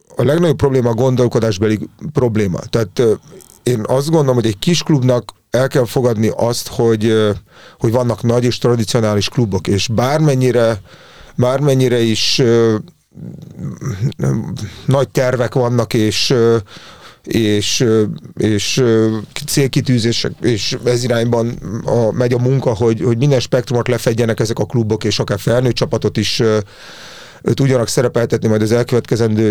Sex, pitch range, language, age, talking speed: male, 110-125 Hz, English, 30-49, 125 wpm